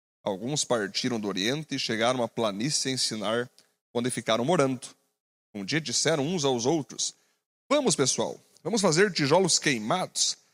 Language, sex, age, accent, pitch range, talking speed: Portuguese, male, 30-49, Brazilian, 120-170 Hz, 140 wpm